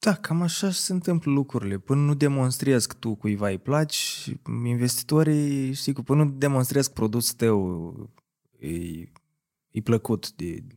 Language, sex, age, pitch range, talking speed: Romanian, male, 20-39, 110-150 Hz, 150 wpm